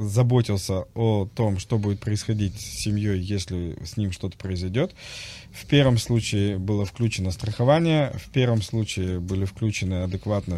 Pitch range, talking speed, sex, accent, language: 95-120 Hz, 140 wpm, male, native, Russian